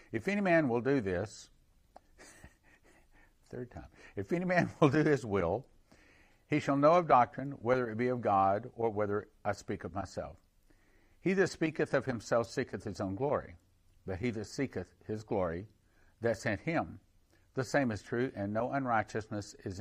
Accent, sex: American, male